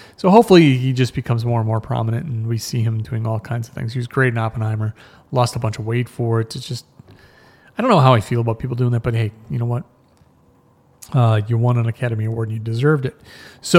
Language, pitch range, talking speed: English, 120-145 Hz, 250 wpm